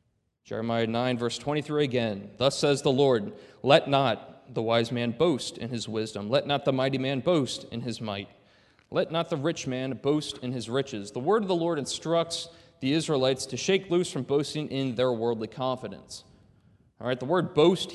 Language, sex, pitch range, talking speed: English, male, 115-150 Hz, 195 wpm